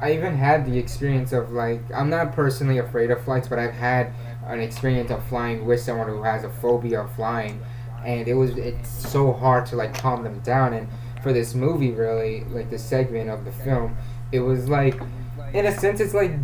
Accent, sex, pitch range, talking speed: American, male, 120-130 Hz, 210 wpm